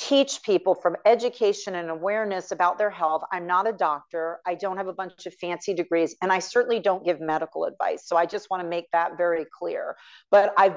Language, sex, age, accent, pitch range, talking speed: English, female, 40-59, American, 165-200 Hz, 215 wpm